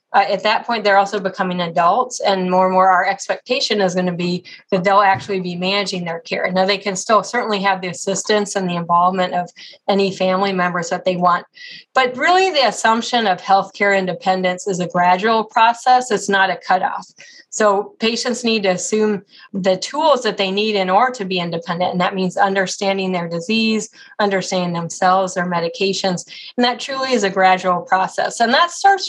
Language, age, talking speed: English, 30-49, 195 wpm